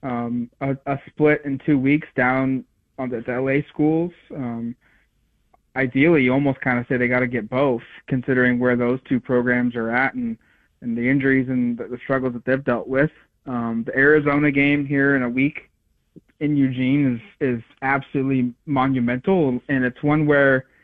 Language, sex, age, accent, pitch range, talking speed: English, male, 30-49, American, 125-145 Hz, 170 wpm